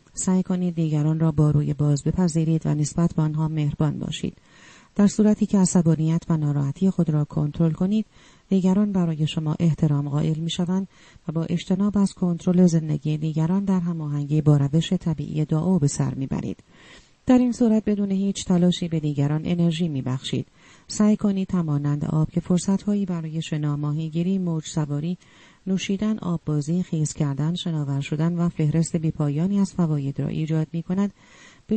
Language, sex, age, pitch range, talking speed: Persian, female, 40-59, 155-185 Hz, 160 wpm